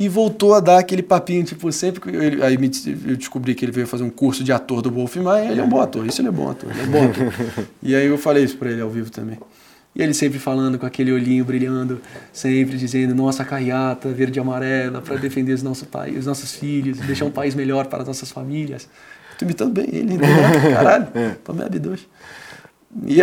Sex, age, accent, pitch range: male, 20-39, Brazilian, 130-190 Hz